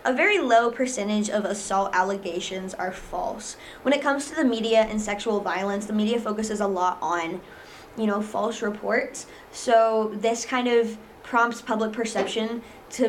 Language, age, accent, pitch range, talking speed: English, 20-39, American, 205-245 Hz, 165 wpm